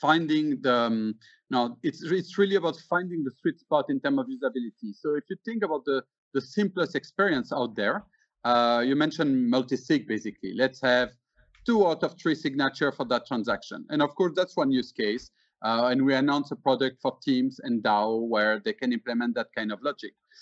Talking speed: 195 wpm